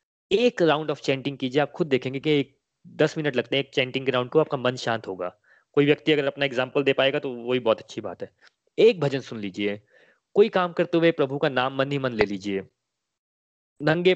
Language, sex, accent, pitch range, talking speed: Hindi, male, native, 130-165 Hz, 220 wpm